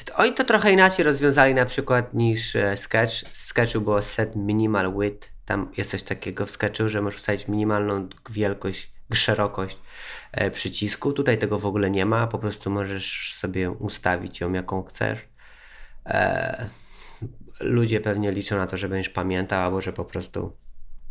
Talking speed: 155 wpm